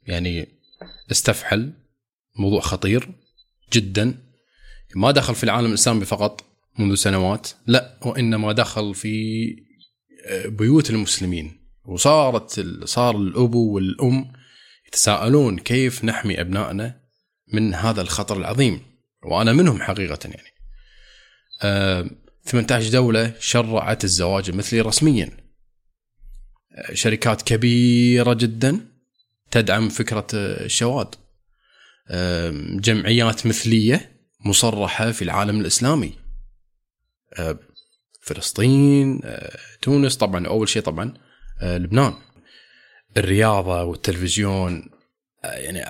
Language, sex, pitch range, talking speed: Arabic, male, 100-125 Hz, 85 wpm